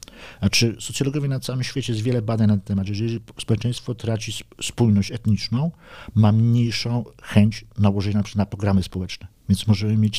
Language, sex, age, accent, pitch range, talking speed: Polish, male, 50-69, native, 105-120 Hz, 160 wpm